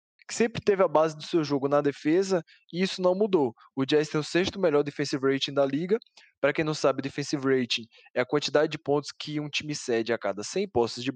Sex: male